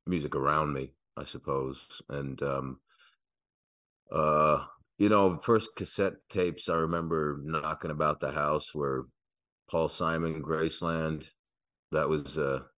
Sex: male